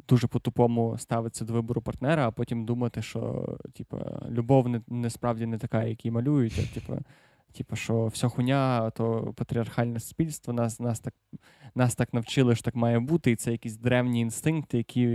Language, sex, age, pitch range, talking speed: Ukrainian, male, 20-39, 115-130 Hz, 180 wpm